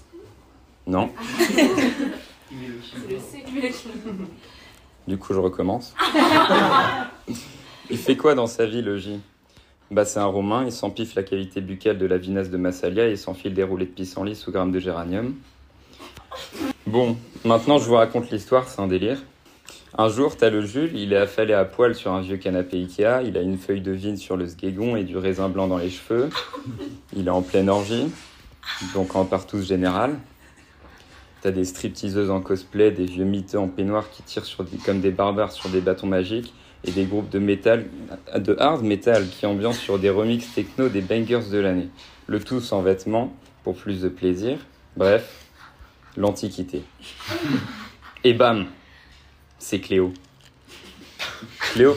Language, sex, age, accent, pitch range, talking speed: French, male, 30-49, French, 95-115 Hz, 160 wpm